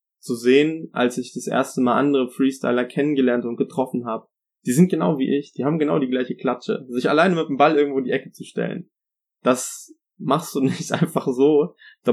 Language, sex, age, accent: German, male, 20-39, German